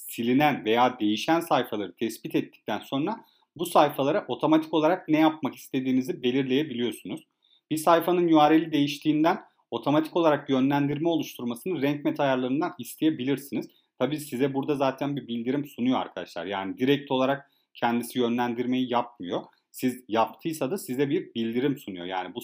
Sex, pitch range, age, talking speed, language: male, 125-160 Hz, 40-59, 130 wpm, Turkish